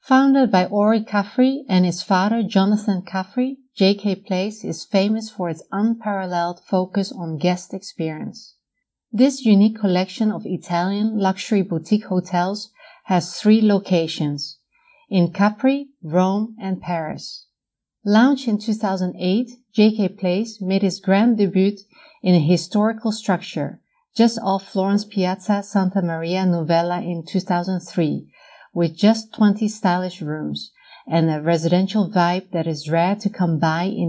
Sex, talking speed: female, 130 wpm